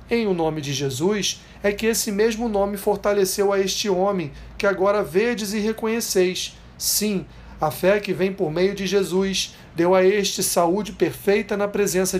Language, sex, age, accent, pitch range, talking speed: Portuguese, male, 40-59, Brazilian, 165-205 Hz, 170 wpm